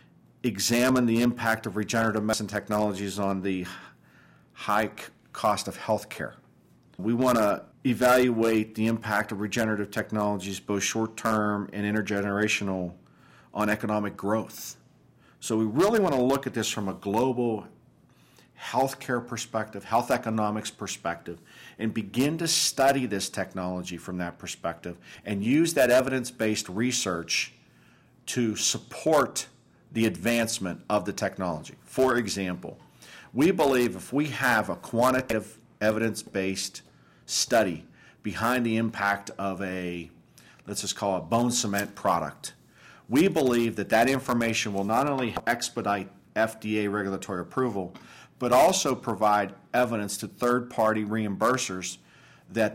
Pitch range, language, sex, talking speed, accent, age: 100-120 Hz, English, male, 130 wpm, American, 50-69